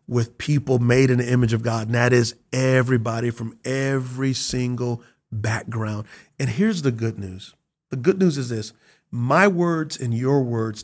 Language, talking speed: English, 170 wpm